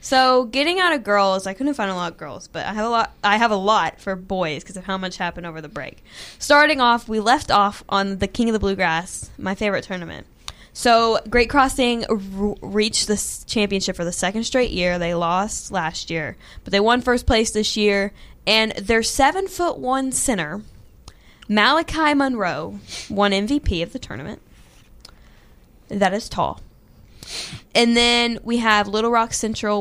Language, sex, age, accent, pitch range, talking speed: English, female, 10-29, American, 195-235 Hz, 185 wpm